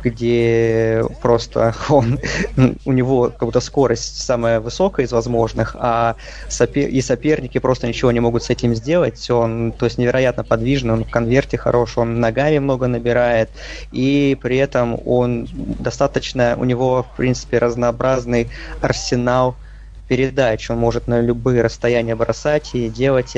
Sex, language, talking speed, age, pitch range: male, Russian, 140 wpm, 20-39, 115-135 Hz